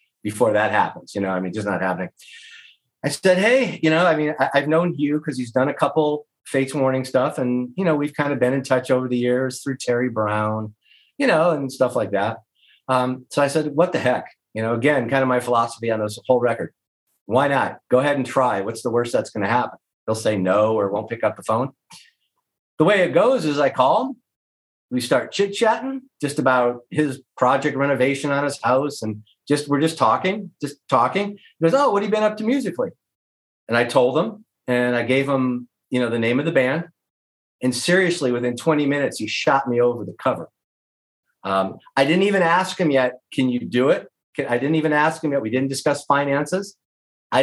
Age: 30-49